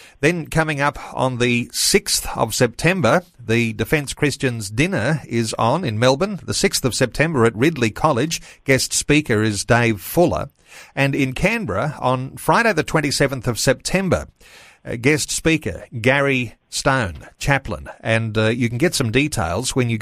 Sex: male